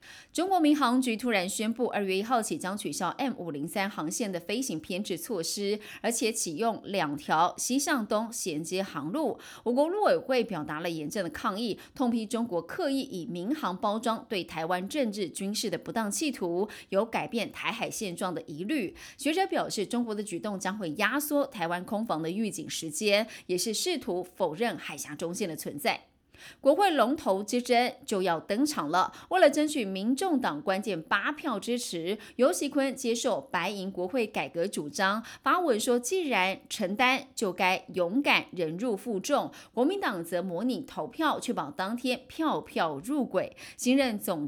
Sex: female